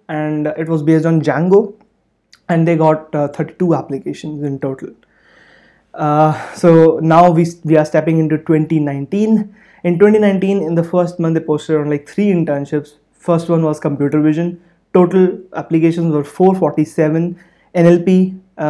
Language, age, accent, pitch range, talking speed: English, 20-39, Indian, 150-175 Hz, 140 wpm